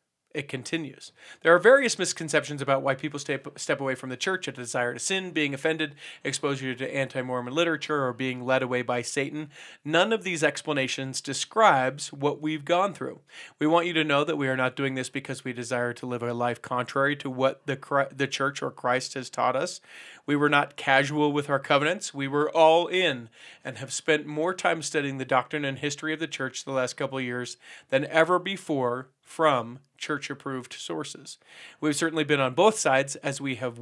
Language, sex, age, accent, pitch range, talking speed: English, male, 40-59, American, 130-155 Hz, 200 wpm